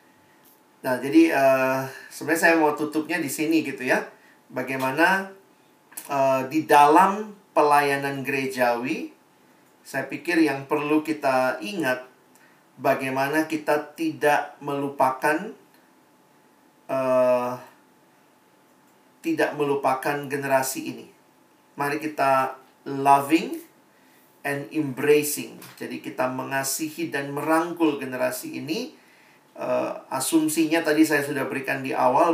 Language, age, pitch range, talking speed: Indonesian, 40-59, 130-155 Hz, 95 wpm